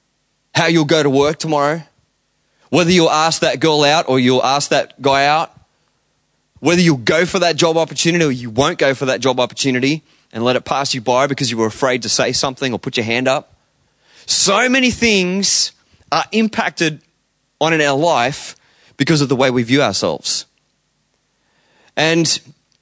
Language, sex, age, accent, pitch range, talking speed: English, male, 20-39, Australian, 145-205 Hz, 180 wpm